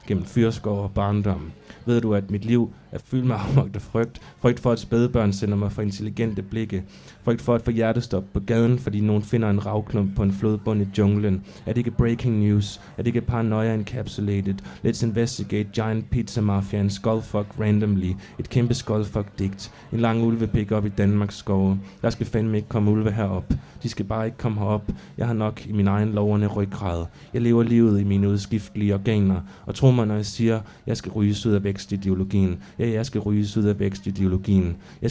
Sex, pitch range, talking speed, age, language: male, 100-115 Hz, 190 wpm, 20-39, Danish